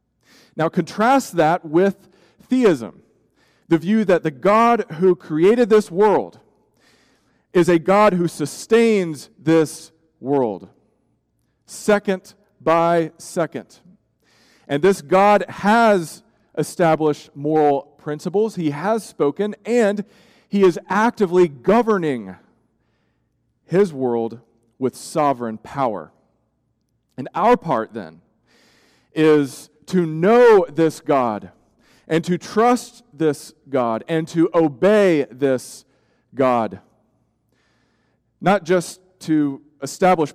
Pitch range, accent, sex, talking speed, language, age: 145-200 Hz, American, male, 100 wpm, English, 40-59